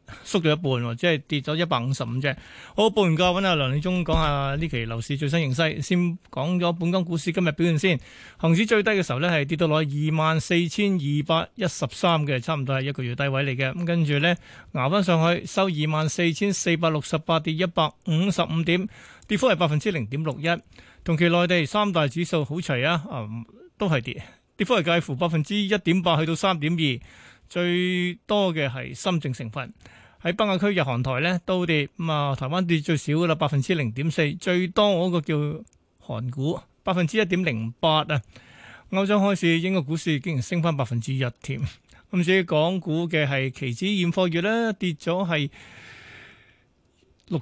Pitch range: 145-180 Hz